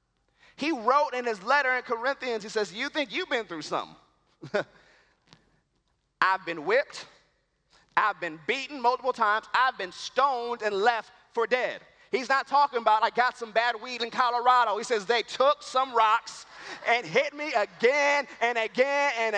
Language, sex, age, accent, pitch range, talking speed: English, male, 30-49, American, 235-290 Hz, 165 wpm